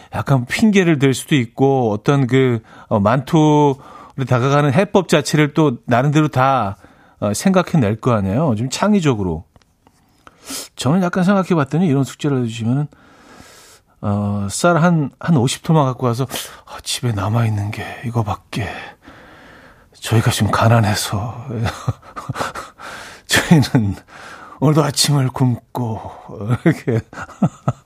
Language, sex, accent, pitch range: Korean, male, native, 115-160 Hz